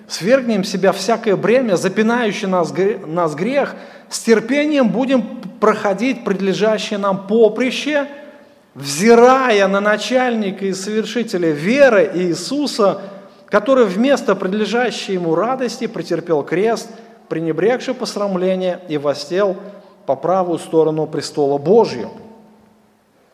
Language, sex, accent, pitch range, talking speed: Russian, male, native, 185-230 Hz, 95 wpm